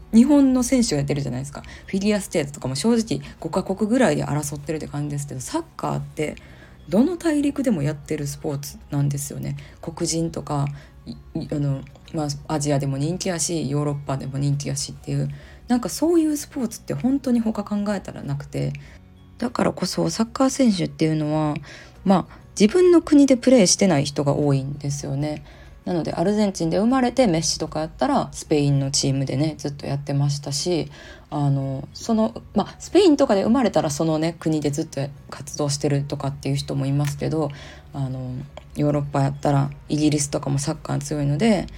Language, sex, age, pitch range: Japanese, female, 20-39, 140-205 Hz